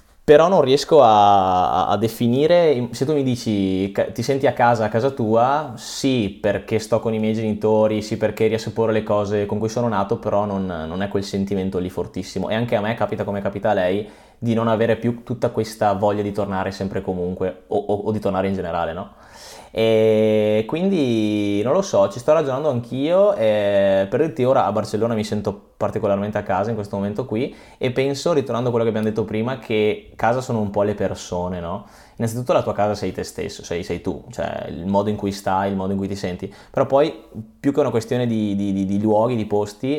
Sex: male